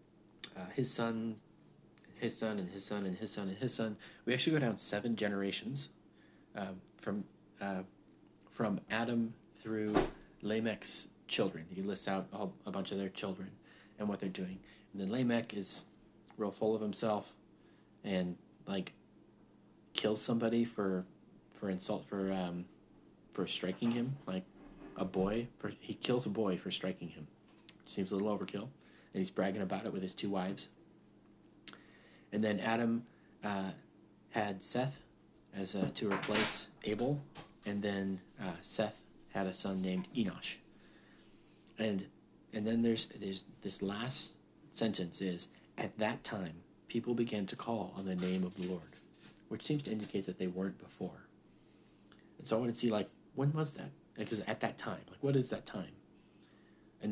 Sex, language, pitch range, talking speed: male, English, 95-115 Hz, 165 wpm